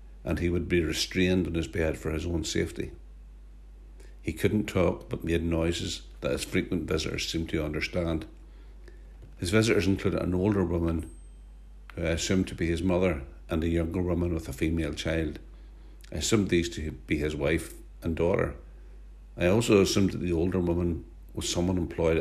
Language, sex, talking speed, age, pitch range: English, male, 175 wpm, 60-79, 70-85 Hz